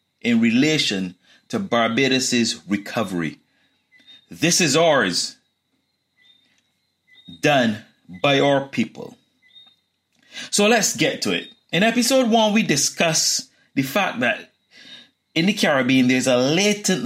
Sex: male